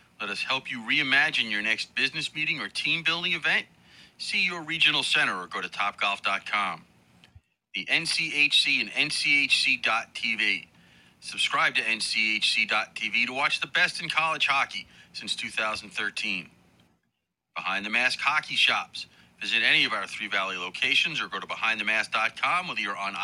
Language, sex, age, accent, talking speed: English, male, 40-59, American, 140 wpm